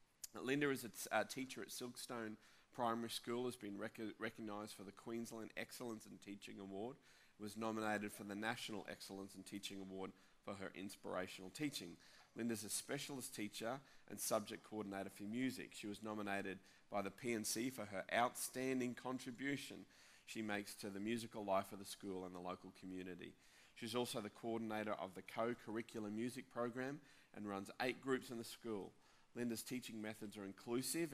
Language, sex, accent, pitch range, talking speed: English, male, Australian, 100-120 Hz, 165 wpm